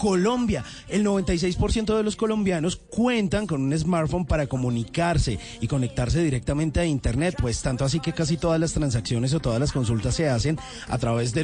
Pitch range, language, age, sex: 130-185 Hz, Spanish, 30-49, male